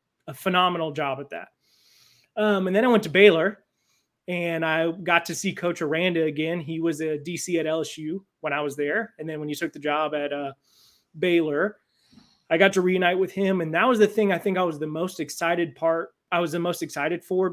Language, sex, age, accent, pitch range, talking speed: English, male, 30-49, American, 155-195 Hz, 220 wpm